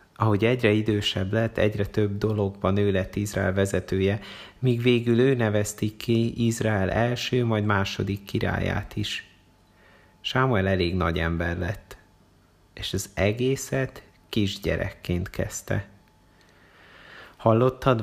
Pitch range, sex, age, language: 90-110 Hz, male, 30-49, Hungarian